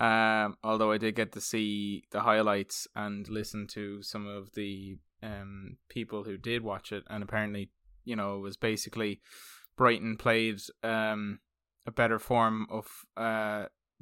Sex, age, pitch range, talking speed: male, 20-39, 100-110 Hz, 155 wpm